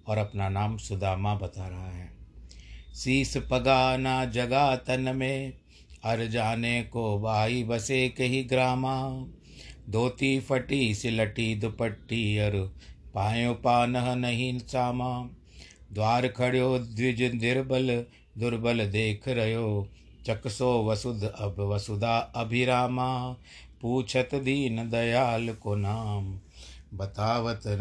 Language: Hindi